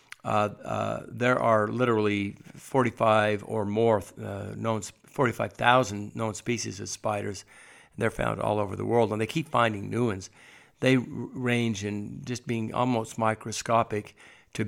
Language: English